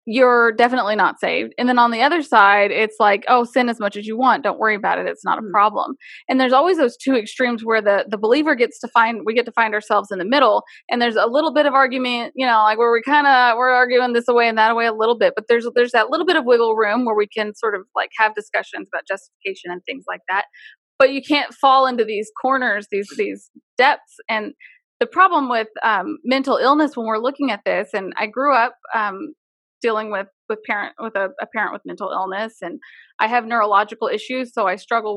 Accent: American